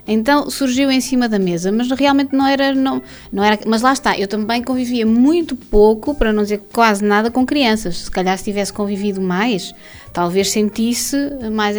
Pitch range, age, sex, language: 200-250 Hz, 20-39, female, Portuguese